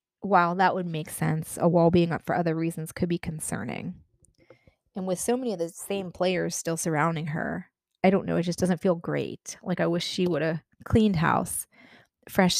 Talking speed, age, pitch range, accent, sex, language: 205 wpm, 20-39, 170-200 Hz, American, female, English